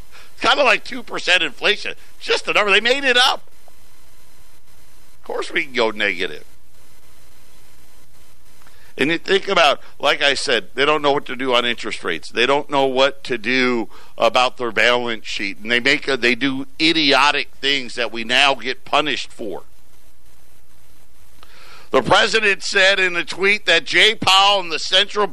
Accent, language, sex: American, English, male